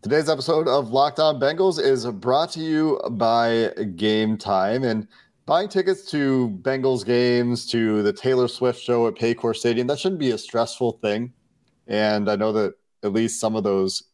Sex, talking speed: male, 180 wpm